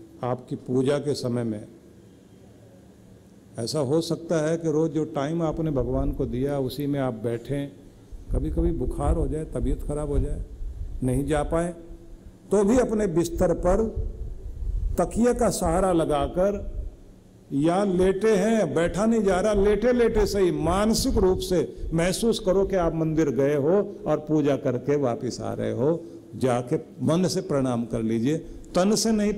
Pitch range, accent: 120-170 Hz, native